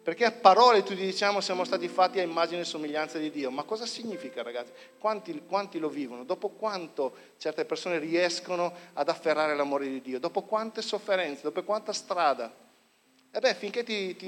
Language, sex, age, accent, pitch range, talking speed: Italian, male, 50-69, native, 140-210 Hz, 180 wpm